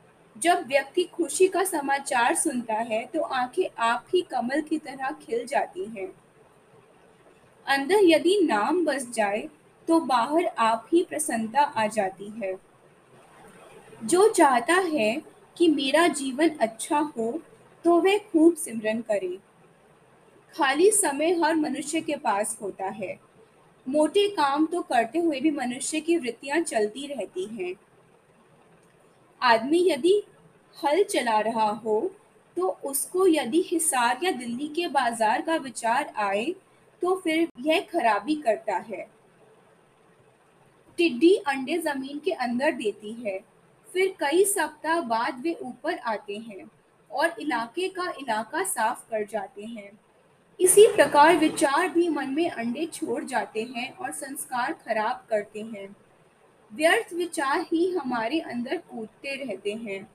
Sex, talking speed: female, 130 wpm